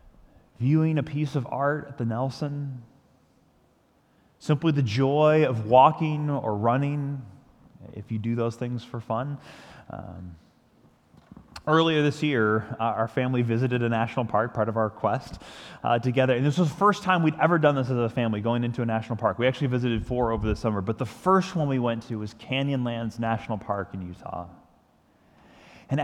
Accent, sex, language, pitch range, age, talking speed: American, male, English, 110-135 Hz, 20-39, 180 wpm